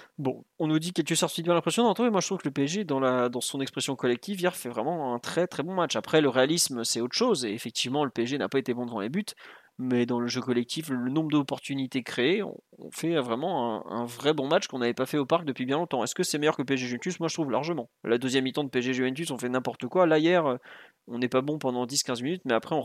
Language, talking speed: French, 280 wpm